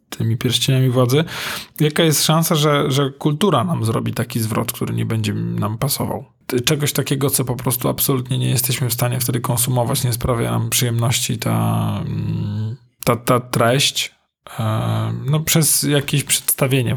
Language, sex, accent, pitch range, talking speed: Polish, male, native, 115-145 Hz, 150 wpm